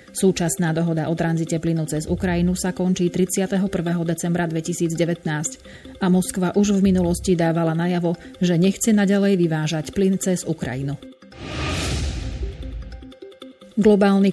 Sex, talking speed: female, 115 wpm